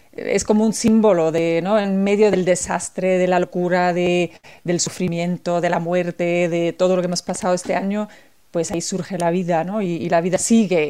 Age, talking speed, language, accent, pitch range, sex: 40-59, 210 wpm, Spanish, Spanish, 175-210 Hz, female